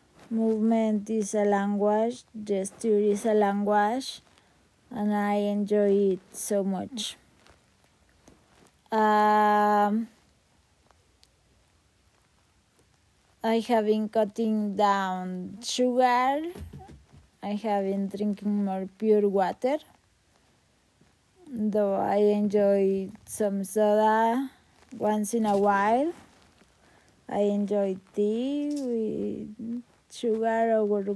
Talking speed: 85 wpm